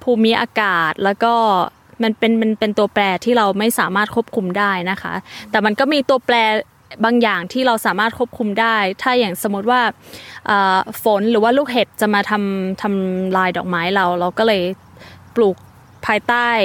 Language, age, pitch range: Thai, 20-39, 190-230 Hz